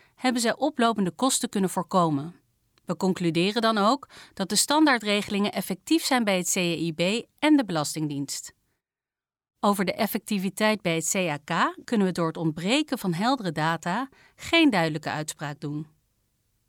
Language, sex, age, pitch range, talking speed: Dutch, female, 40-59, 165-245 Hz, 140 wpm